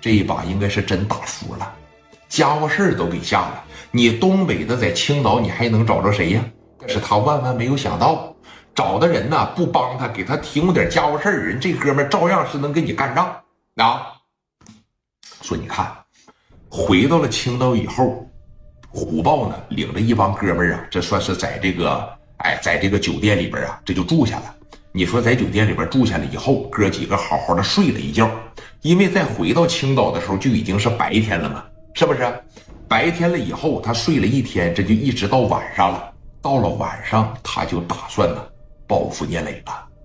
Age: 50-69